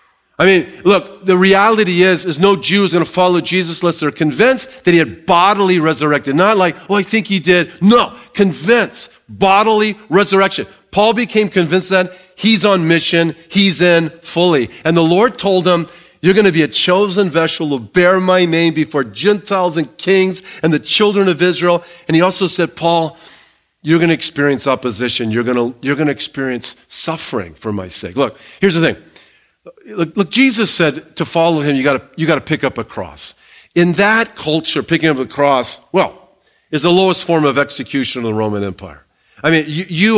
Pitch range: 150-190 Hz